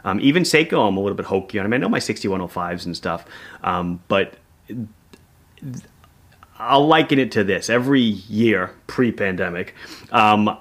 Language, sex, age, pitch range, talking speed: English, male, 30-49, 100-125 Hz, 170 wpm